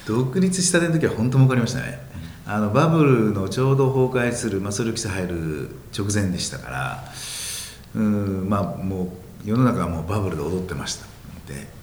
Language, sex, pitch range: Japanese, male, 90-130 Hz